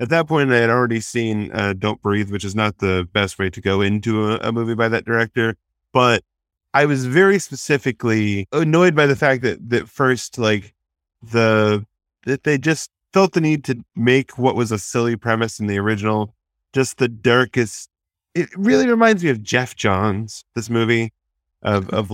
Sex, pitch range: male, 100-120 Hz